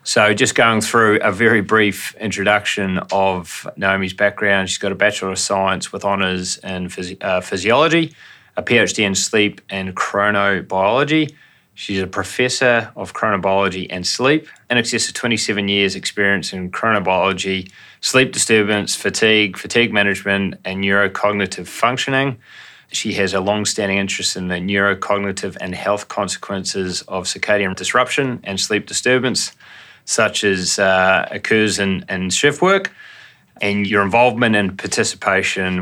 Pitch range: 95-110 Hz